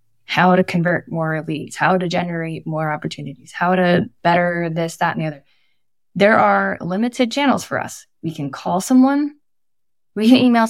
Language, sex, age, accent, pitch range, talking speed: English, female, 10-29, American, 160-195 Hz, 175 wpm